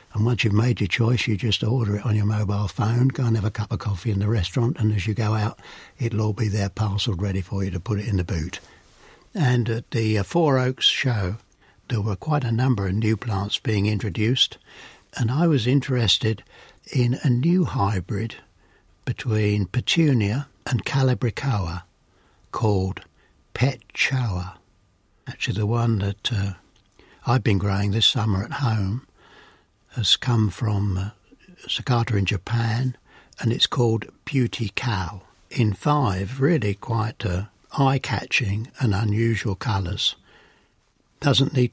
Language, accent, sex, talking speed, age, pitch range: English, British, male, 155 wpm, 60-79, 100-125 Hz